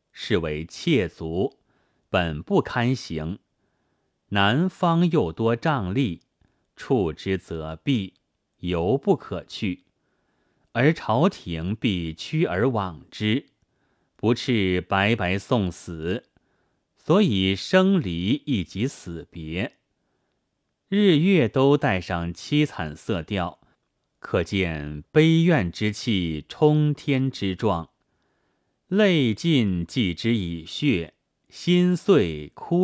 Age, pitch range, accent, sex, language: 30-49, 85-140 Hz, native, male, Chinese